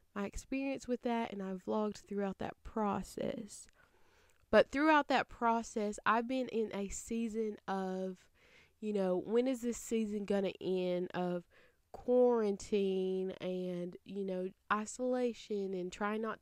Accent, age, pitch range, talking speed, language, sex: American, 20-39, 190-220 Hz, 140 wpm, English, female